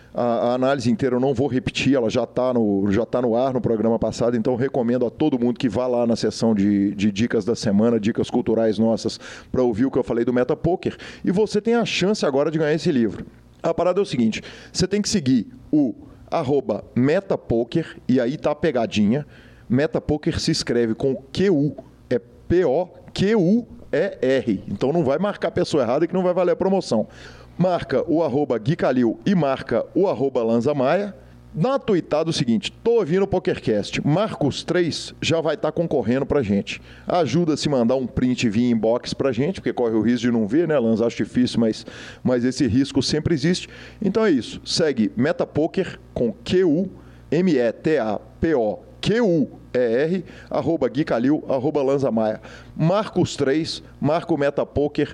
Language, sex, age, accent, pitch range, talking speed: Portuguese, male, 40-59, Brazilian, 115-170 Hz, 175 wpm